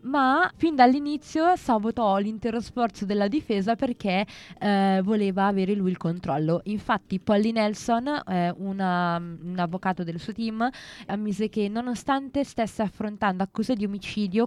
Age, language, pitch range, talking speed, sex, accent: 20-39, Italian, 185-225 Hz, 135 wpm, female, native